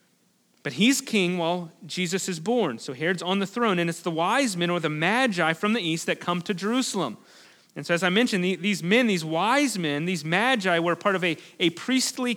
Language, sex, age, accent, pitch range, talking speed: English, male, 30-49, American, 175-230 Hz, 225 wpm